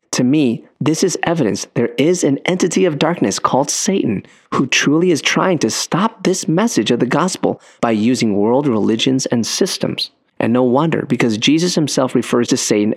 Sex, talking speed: male, 180 wpm